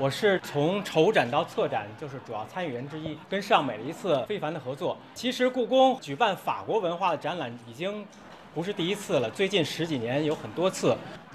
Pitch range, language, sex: 150-220 Hz, Chinese, male